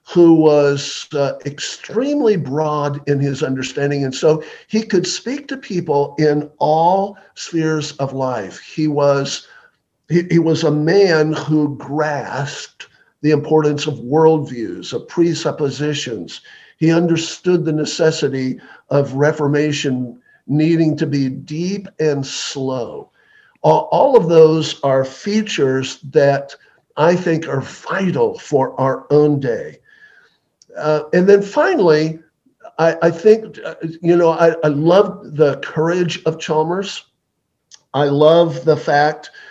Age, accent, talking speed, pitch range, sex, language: 50-69, American, 120 wpm, 145-170 Hz, male, English